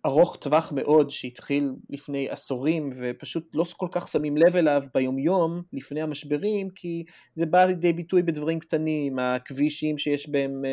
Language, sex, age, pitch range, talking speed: Hebrew, male, 30-49, 125-160 Hz, 145 wpm